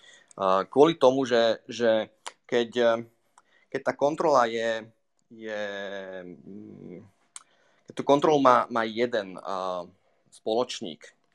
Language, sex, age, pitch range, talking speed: Slovak, male, 30-49, 105-130 Hz, 90 wpm